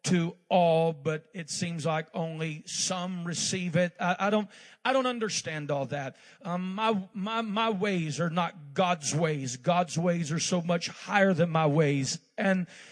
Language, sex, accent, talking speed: English, male, American, 170 wpm